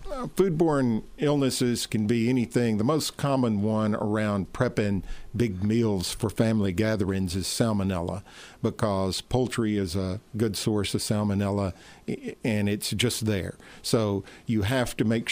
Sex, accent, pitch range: male, American, 105-120 Hz